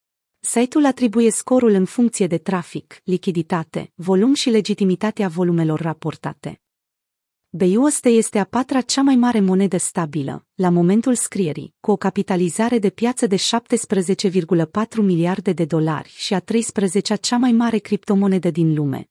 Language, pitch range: Romanian, 175-220 Hz